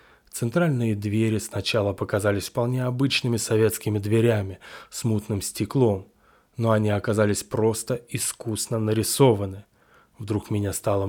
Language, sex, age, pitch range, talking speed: Russian, male, 20-39, 105-120 Hz, 110 wpm